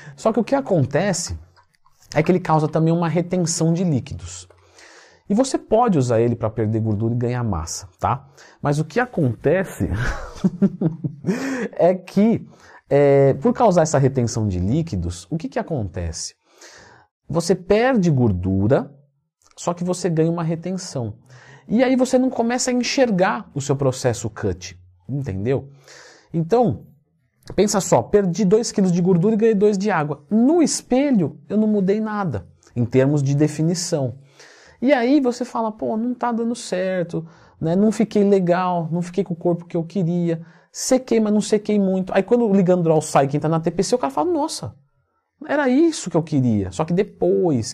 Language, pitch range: Portuguese, 125-200 Hz